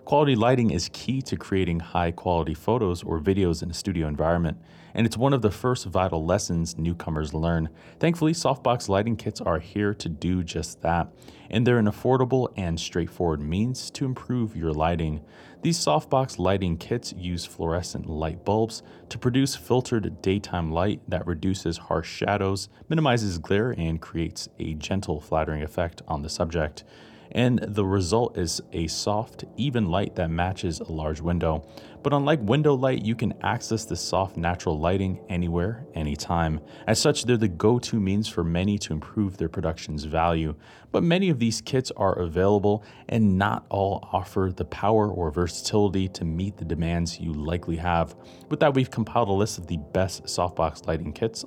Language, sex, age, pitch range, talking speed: English, male, 30-49, 85-110 Hz, 170 wpm